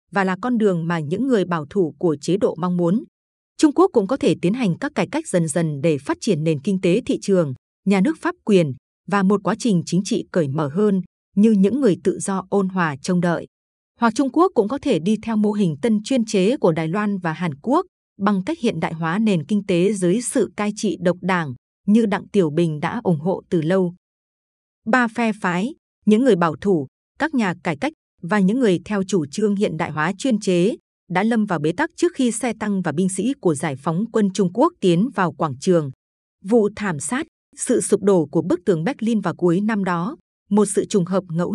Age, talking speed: 20-39, 230 wpm